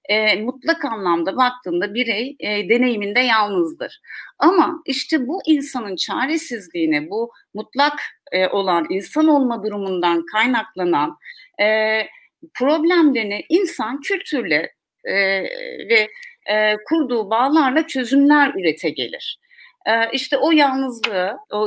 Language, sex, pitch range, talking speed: Turkish, female, 210-310 Hz, 85 wpm